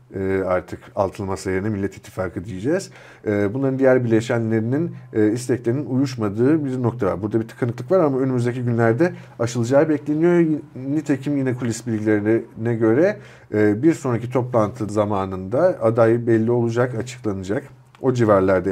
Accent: native